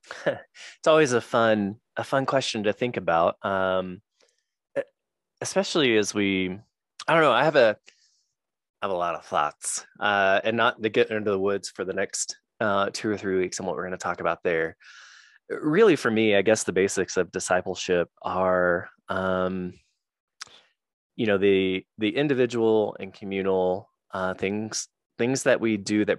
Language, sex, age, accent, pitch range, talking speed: English, male, 20-39, American, 90-110 Hz, 170 wpm